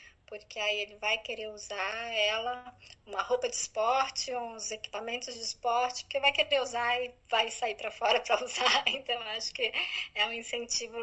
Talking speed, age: 175 wpm, 10-29